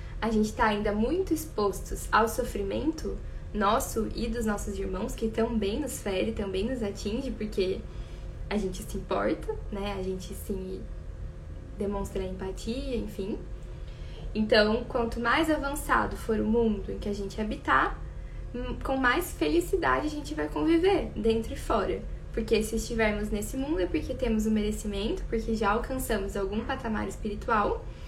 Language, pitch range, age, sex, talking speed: Portuguese, 205-245 Hz, 10-29, female, 150 wpm